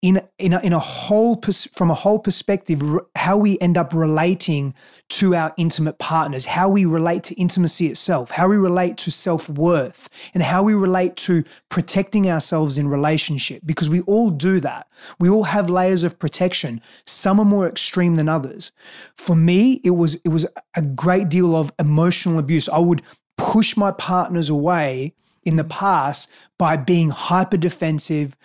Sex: male